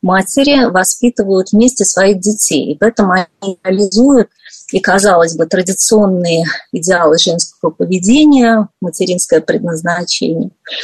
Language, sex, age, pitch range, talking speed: Russian, female, 30-49, 180-225 Hz, 105 wpm